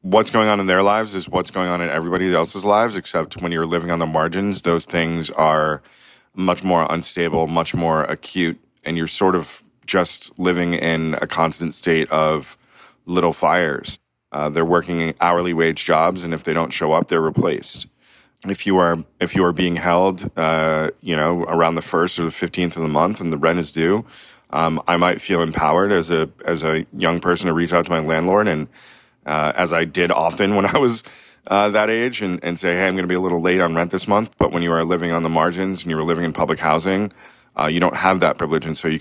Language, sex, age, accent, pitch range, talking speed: English, male, 30-49, American, 80-90 Hz, 230 wpm